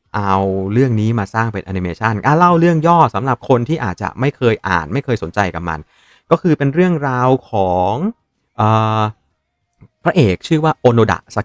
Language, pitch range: Thai, 105-140 Hz